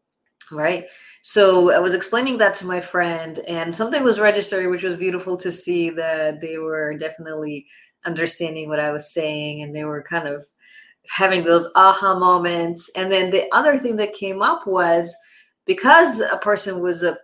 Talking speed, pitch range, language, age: 175 wpm, 165-215 Hz, English, 20-39